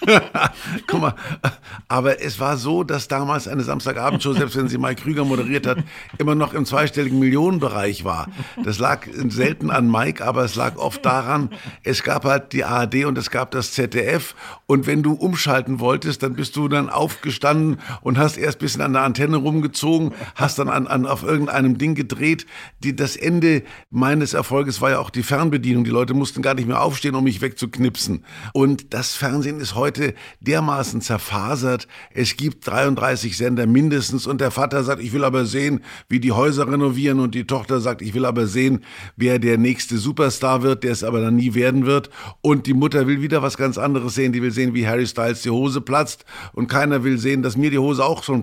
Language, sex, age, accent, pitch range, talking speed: German, male, 50-69, German, 125-140 Hz, 200 wpm